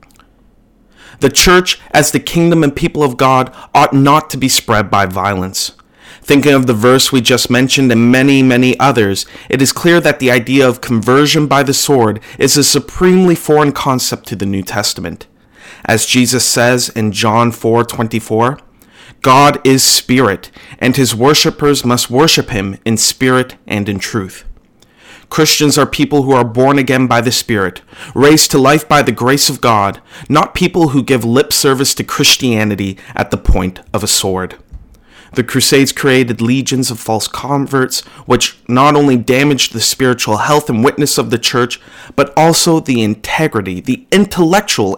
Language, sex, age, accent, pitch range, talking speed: English, male, 30-49, American, 115-145 Hz, 165 wpm